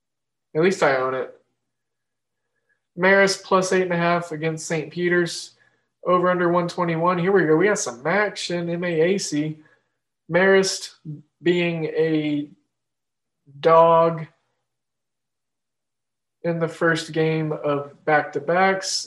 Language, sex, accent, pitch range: English, male, American, 140-180 Hz